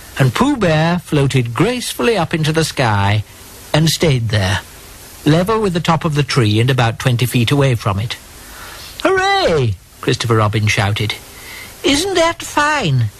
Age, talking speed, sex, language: 60-79, 150 wpm, male, English